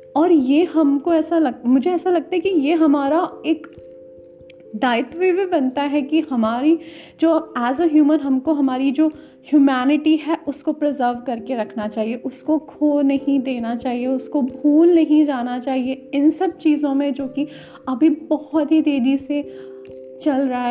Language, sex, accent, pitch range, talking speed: Hindi, female, native, 255-315 Hz, 155 wpm